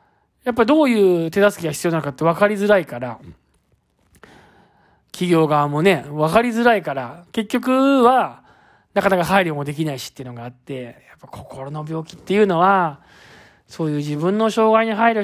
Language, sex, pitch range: Japanese, male, 160-230 Hz